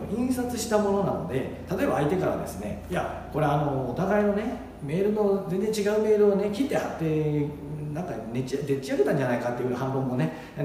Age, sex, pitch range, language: 40-59, male, 145-205 Hz, Japanese